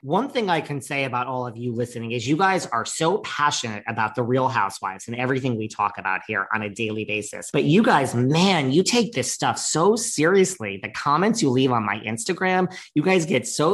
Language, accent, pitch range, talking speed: English, American, 120-155 Hz, 225 wpm